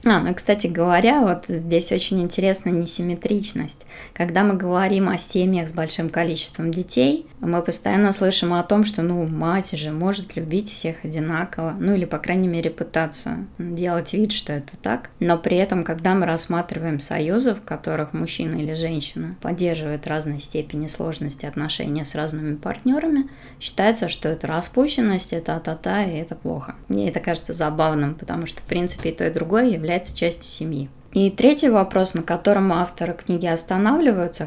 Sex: female